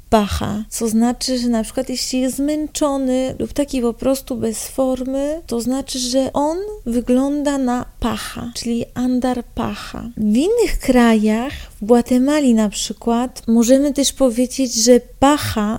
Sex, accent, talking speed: female, native, 140 wpm